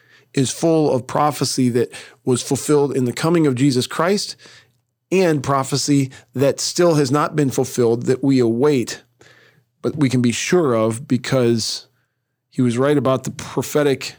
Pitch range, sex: 120-140 Hz, male